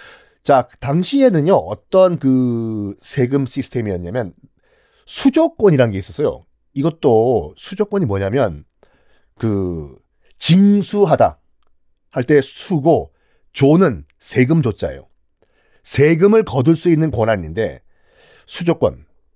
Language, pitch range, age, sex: Korean, 125-200 Hz, 40-59, male